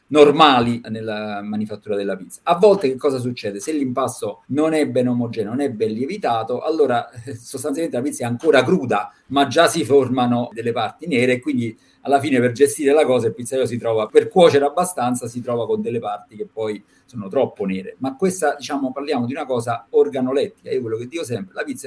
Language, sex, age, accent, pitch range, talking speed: Italian, male, 50-69, native, 115-150 Hz, 205 wpm